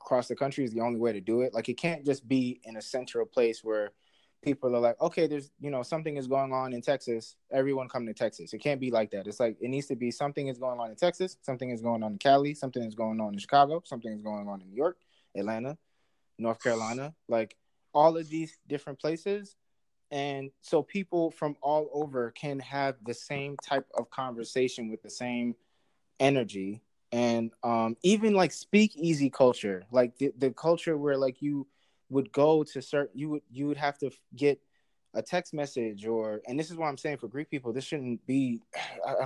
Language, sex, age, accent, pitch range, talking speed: English, male, 20-39, American, 120-150 Hz, 215 wpm